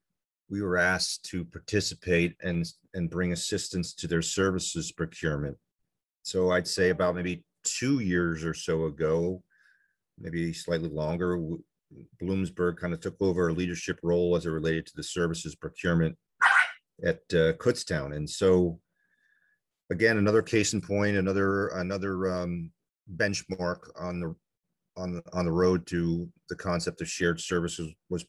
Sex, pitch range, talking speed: male, 85-105 Hz, 150 wpm